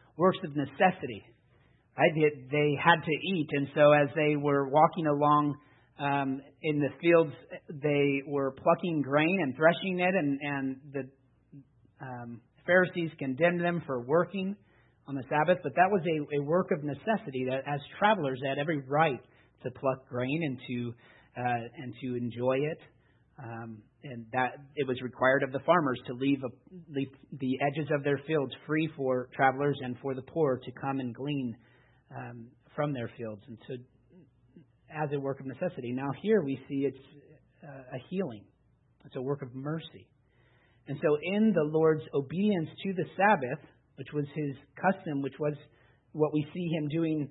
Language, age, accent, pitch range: English, 40-59, American, 130-155 Hz